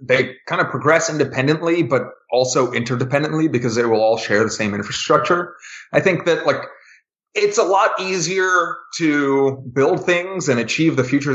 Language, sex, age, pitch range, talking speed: English, male, 30-49, 120-155 Hz, 165 wpm